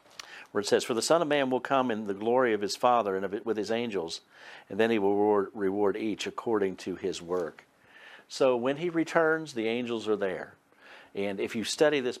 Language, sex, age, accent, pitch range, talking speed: English, male, 50-69, American, 100-135 Hz, 205 wpm